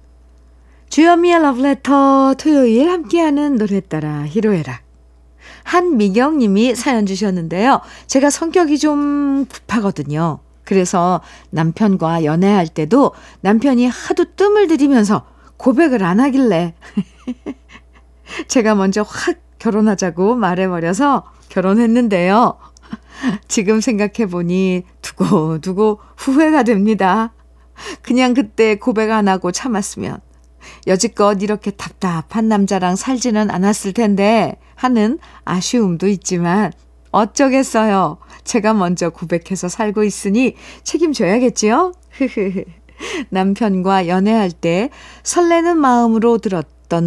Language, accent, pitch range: Korean, native, 185-270 Hz